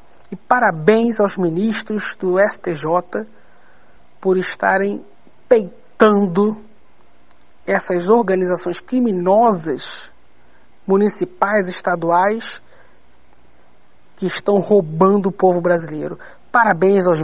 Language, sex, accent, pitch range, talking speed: Portuguese, male, Brazilian, 170-200 Hz, 80 wpm